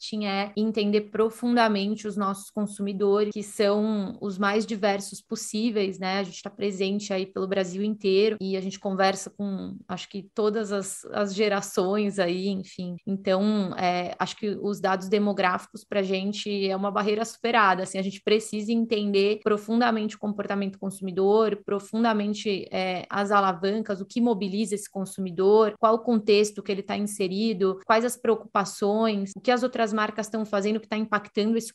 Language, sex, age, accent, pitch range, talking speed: English, female, 20-39, Brazilian, 195-215 Hz, 165 wpm